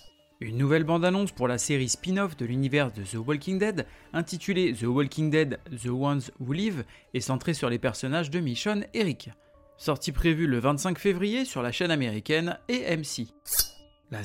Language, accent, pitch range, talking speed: French, French, 130-195 Hz, 175 wpm